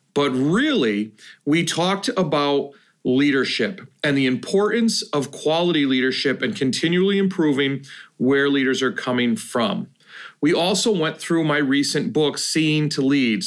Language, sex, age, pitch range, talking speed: English, male, 40-59, 140-185 Hz, 135 wpm